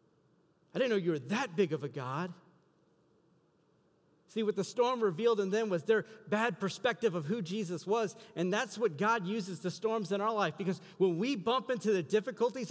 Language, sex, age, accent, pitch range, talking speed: English, male, 40-59, American, 160-215 Hz, 200 wpm